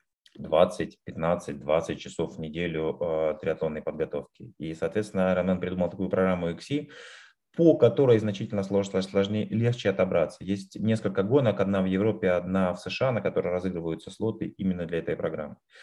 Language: Russian